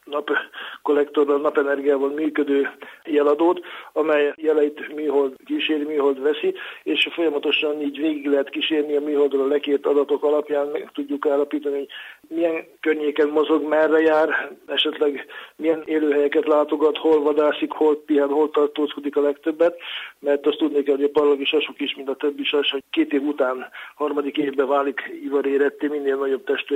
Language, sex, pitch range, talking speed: Hungarian, male, 140-155 Hz, 150 wpm